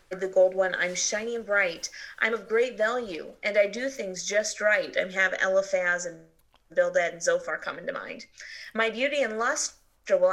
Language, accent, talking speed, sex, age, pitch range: English, American, 180 wpm, female, 30-49, 190-250 Hz